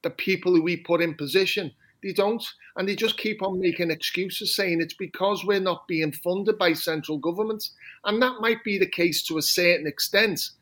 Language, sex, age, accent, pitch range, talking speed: English, male, 30-49, British, 160-200 Hz, 205 wpm